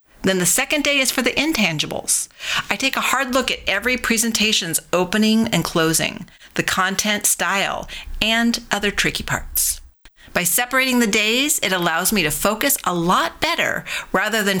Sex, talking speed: female, 165 wpm